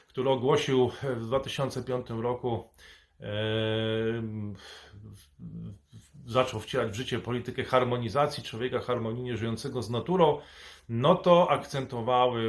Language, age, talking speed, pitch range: Polish, 30-49, 90 wpm, 115-145 Hz